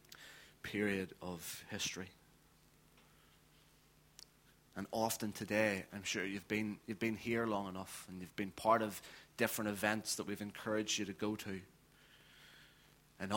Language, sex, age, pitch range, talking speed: English, male, 30-49, 95-105 Hz, 135 wpm